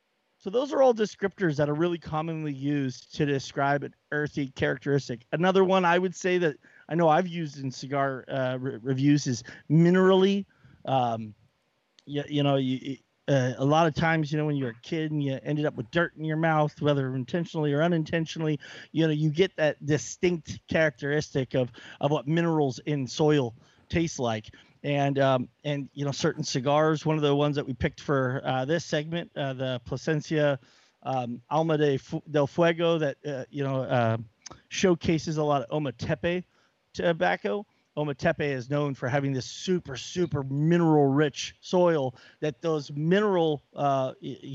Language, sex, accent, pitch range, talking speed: English, male, American, 135-165 Hz, 170 wpm